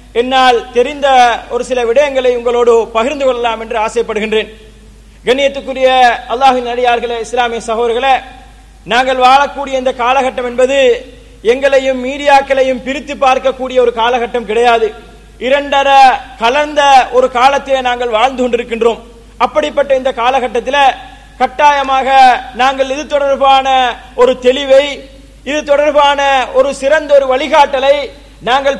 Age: 30-49